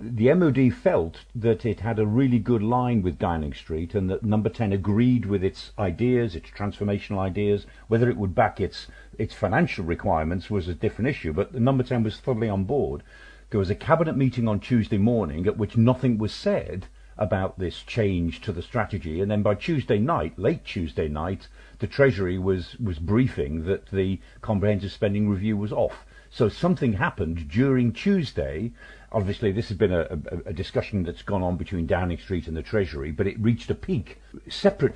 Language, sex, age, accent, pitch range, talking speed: English, male, 50-69, British, 95-115 Hz, 190 wpm